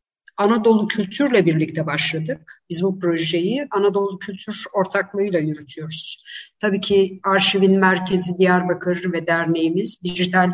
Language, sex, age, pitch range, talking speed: Turkish, female, 60-79, 185-205 Hz, 110 wpm